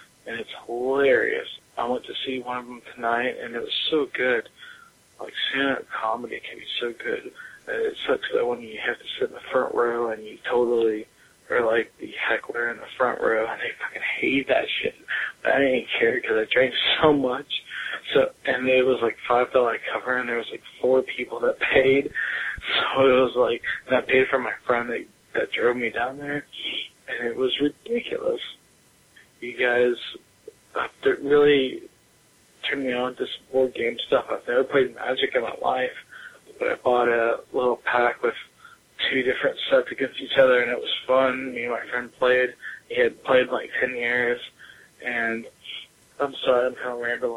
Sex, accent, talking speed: male, American, 195 wpm